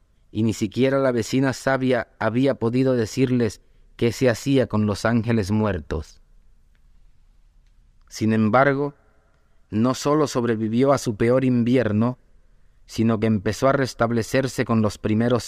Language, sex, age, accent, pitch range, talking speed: Spanish, male, 30-49, Mexican, 105-130 Hz, 130 wpm